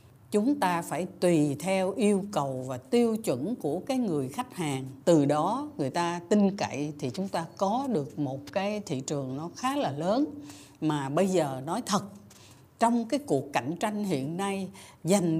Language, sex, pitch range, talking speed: Vietnamese, female, 150-215 Hz, 185 wpm